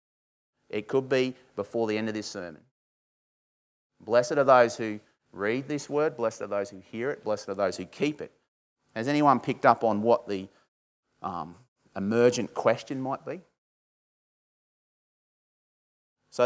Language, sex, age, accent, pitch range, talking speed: English, male, 30-49, Australian, 110-145 Hz, 150 wpm